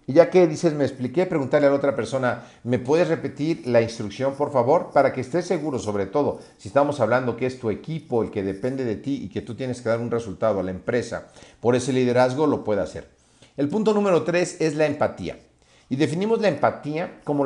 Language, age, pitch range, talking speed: Spanish, 50-69, 120-160 Hz, 225 wpm